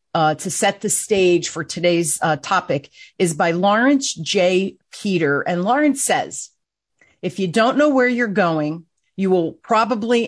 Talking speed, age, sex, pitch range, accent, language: 160 wpm, 40-59, female, 180-230 Hz, American, English